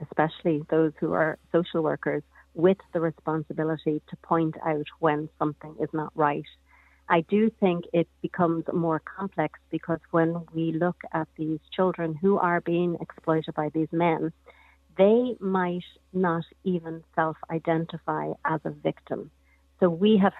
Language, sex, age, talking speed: English, female, 40-59, 145 wpm